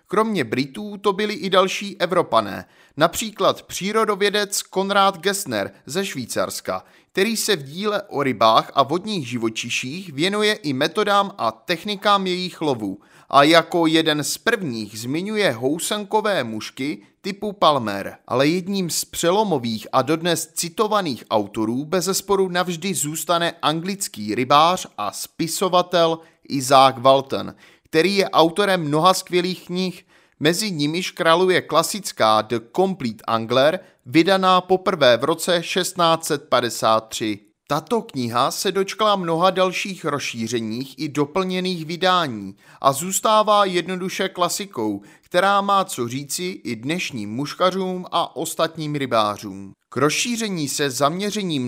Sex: male